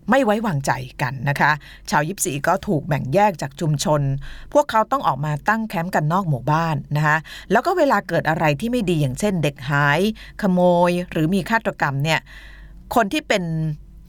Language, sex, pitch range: Thai, female, 145-185 Hz